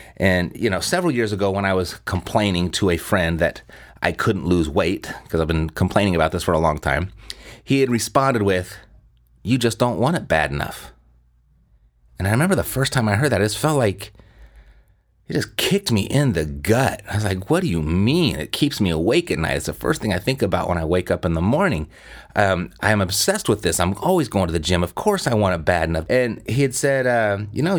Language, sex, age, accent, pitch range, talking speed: English, male, 30-49, American, 80-115 Hz, 240 wpm